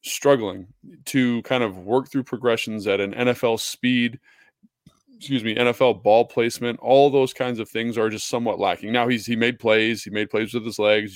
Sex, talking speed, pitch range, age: male, 195 wpm, 110-130 Hz, 20-39